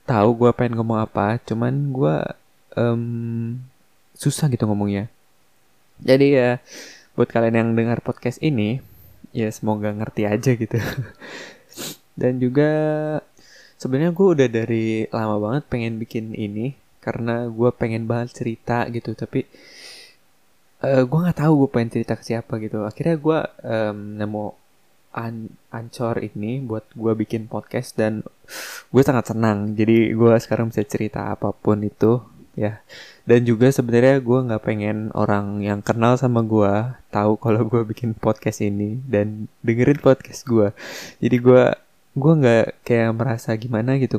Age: 20-39